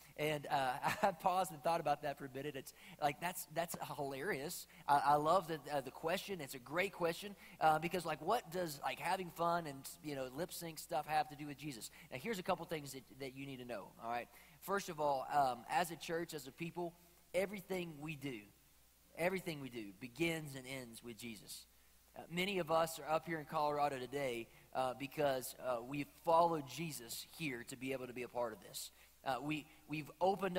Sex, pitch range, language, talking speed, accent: male, 140-175 Hz, English, 215 wpm, American